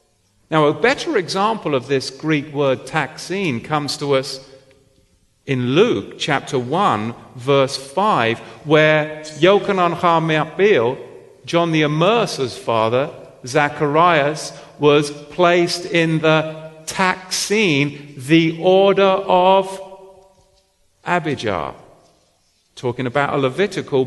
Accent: British